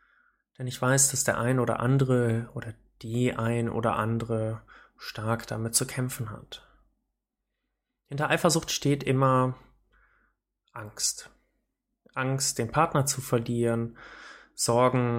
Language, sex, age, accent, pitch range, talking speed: German, male, 20-39, German, 115-145 Hz, 115 wpm